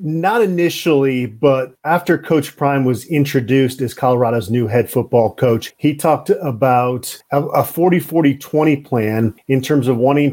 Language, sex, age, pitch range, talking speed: English, male, 40-59, 125-155 Hz, 140 wpm